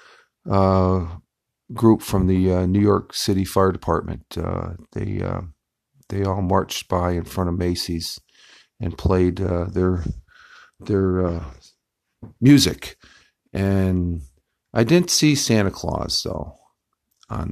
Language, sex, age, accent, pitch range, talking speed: English, male, 50-69, American, 90-100 Hz, 125 wpm